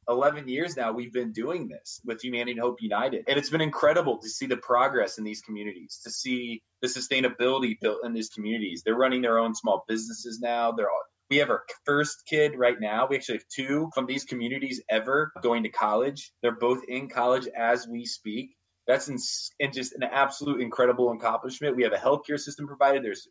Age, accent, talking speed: 20-39, American, 205 wpm